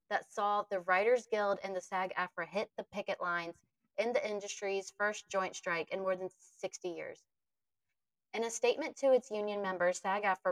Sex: female